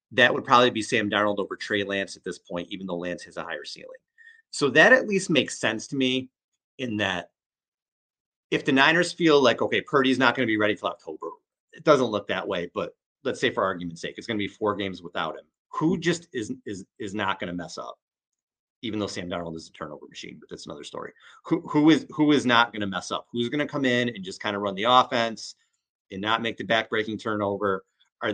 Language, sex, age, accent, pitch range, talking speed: English, male, 30-49, American, 105-170 Hz, 240 wpm